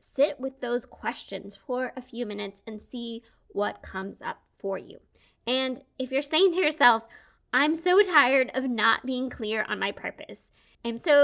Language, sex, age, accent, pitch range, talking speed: English, female, 20-39, American, 215-275 Hz, 175 wpm